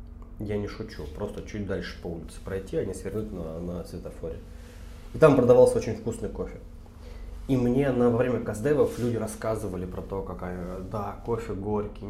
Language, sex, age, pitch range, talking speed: Russian, male, 20-39, 80-105 Hz, 170 wpm